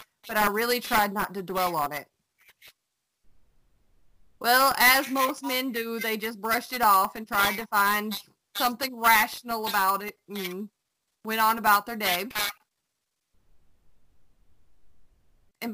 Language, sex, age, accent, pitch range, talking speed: English, female, 20-39, American, 205-245 Hz, 130 wpm